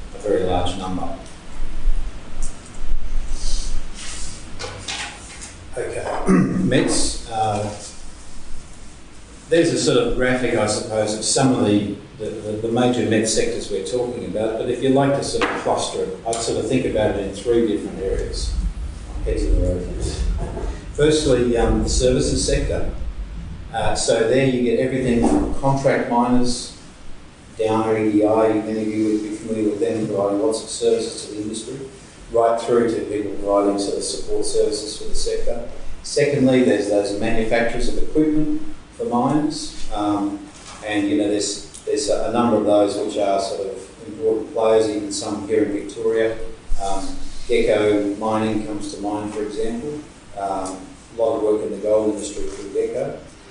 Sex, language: male, English